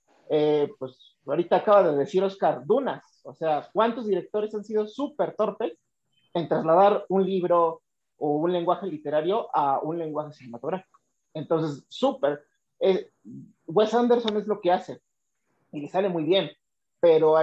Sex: male